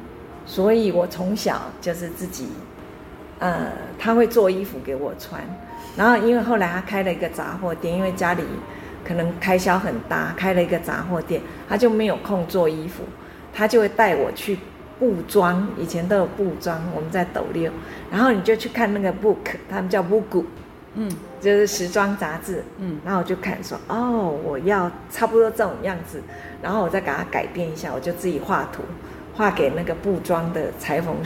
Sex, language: female, Chinese